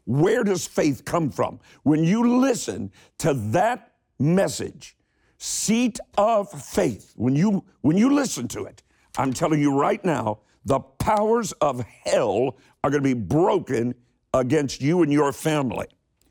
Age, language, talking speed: 60-79, English, 145 wpm